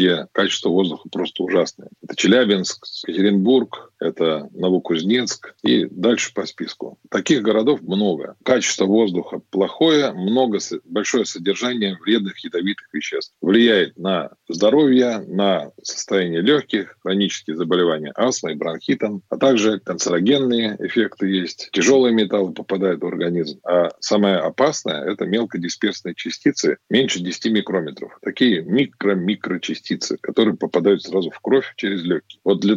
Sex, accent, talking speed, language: male, native, 120 wpm, Russian